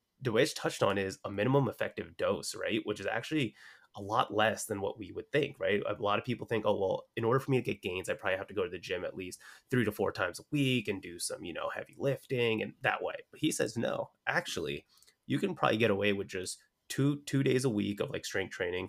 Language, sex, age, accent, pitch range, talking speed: English, male, 20-39, American, 100-135 Hz, 260 wpm